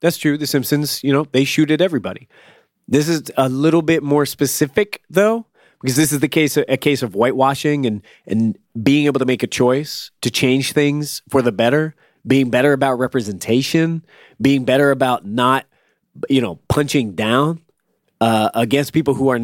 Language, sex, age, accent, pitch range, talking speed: English, male, 30-49, American, 115-145 Hz, 175 wpm